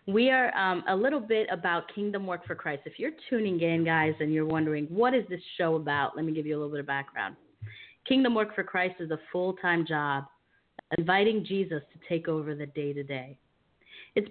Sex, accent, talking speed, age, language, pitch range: female, American, 205 wpm, 30-49, English, 150-195 Hz